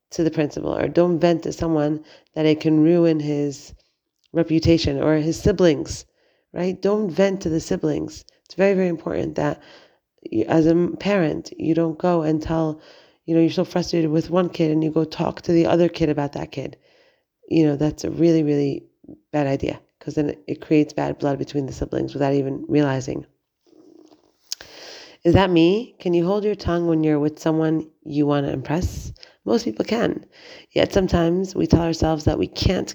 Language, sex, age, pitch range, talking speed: English, female, 30-49, 155-180 Hz, 185 wpm